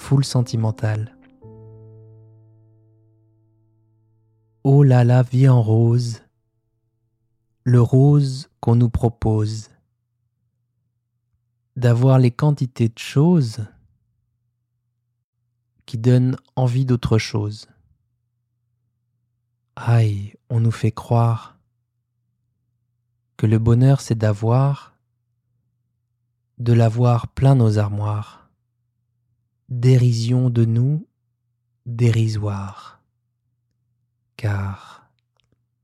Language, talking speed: French, 70 wpm